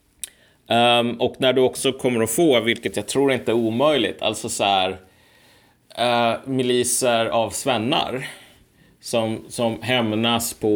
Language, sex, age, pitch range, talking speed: Swedish, male, 30-49, 100-130 Hz, 135 wpm